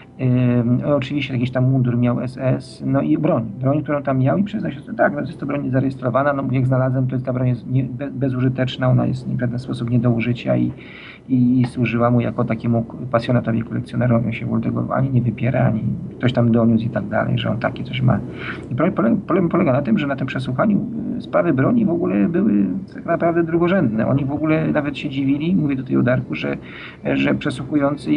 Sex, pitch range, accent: male, 120-140 Hz, native